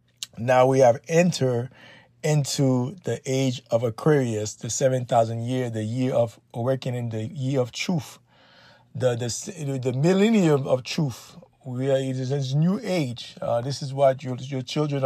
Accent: American